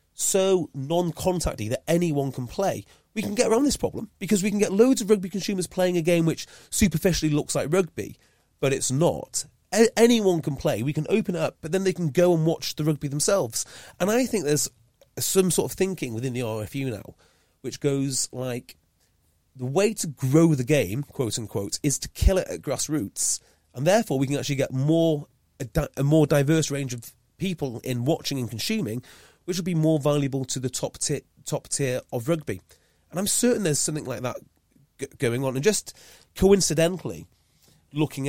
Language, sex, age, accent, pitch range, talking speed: English, male, 30-49, British, 115-165 Hz, 195 wpm